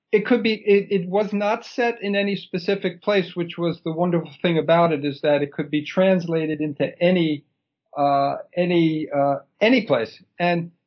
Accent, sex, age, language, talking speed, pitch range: American, male, 50-69, English, 180 wpm, 155-195 Hz